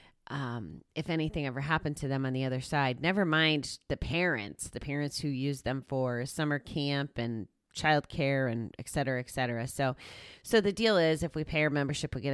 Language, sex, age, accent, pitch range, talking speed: English, female, 30-49, American, 125-155 Hz, 205 wpm